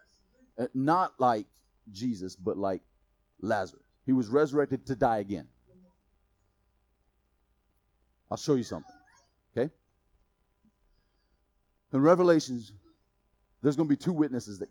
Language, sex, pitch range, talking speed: English, male, 135-220 Hz, 110 wpm